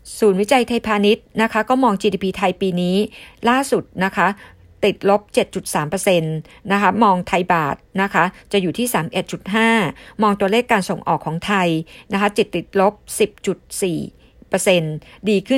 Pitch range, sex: 180-225 Hz, female